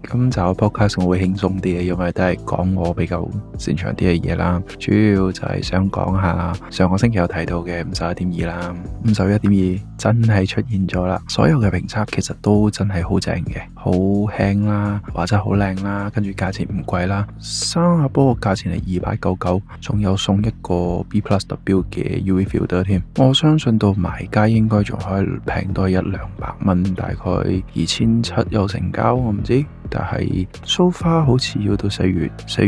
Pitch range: 90-105 Hz